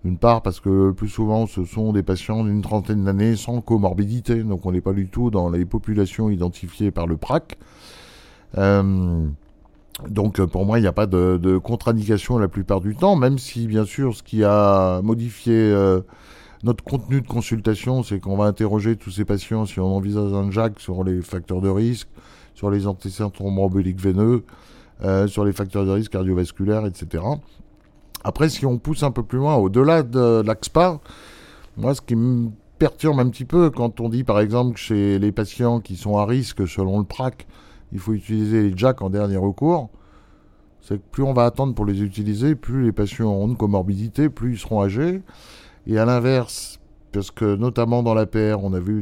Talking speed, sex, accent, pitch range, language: 195 wpm, male, French, 95-120 Hz, English